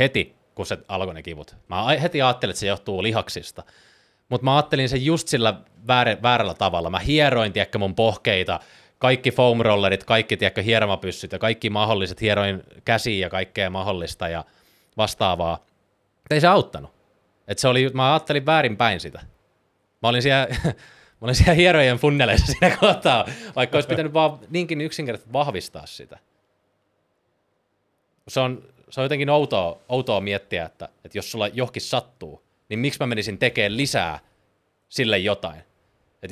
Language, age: Finnish, 30-49